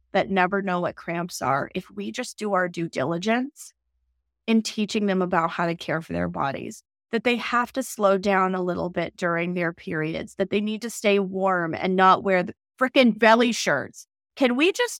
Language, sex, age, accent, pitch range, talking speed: English, female, 30-49, American, 185-250 Hz, 205 wpm